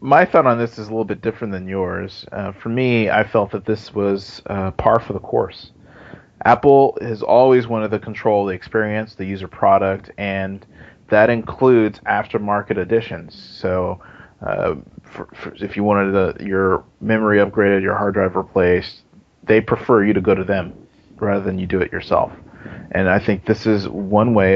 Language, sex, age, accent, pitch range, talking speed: English, male, 30-49, American, 95-120 Hz, 175 wpm